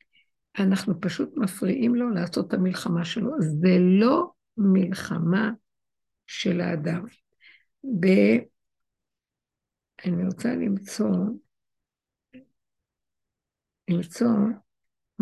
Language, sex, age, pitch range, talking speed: Hebrew, female, 60-79, 180-225 Hz, 75 wpm